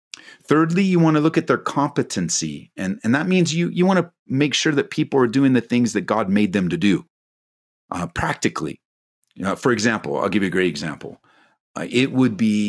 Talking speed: 220 wpm